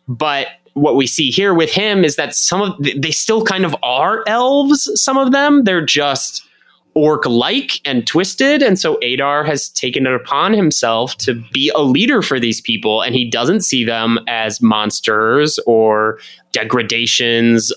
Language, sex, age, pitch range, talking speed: English, male, 20-39, 115-175 Hz, 170 wpm